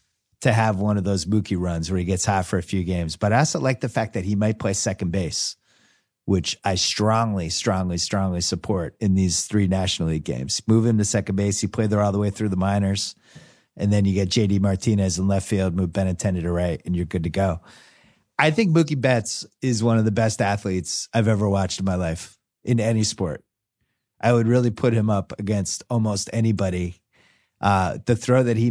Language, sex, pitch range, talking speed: English, male, 95-115 Hz, 215 wpm